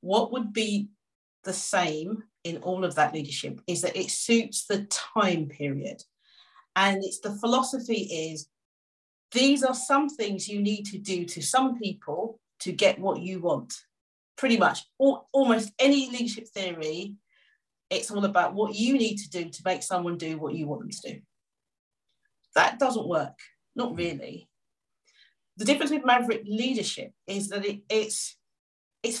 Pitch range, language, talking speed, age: 180-230 Hz, English, 155 wpm, 40-59